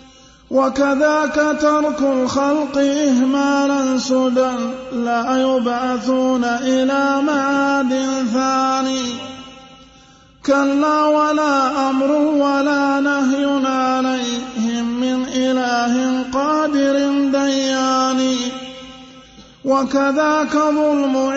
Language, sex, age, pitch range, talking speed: Arabic, male, 30-49, 260-280 Hz, 60 wpm